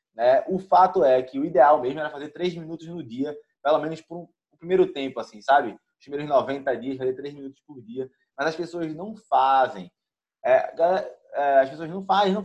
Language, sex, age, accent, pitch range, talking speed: Portuguese, male, 20-39, Brazilian, 135-185 Hz, 210 wpm